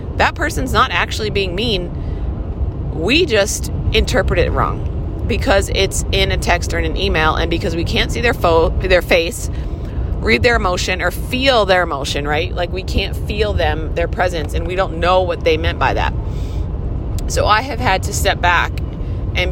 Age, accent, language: 30-49, American, English